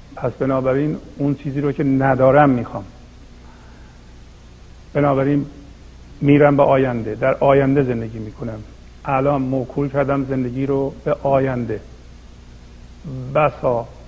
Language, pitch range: Persian, 110-140 Hz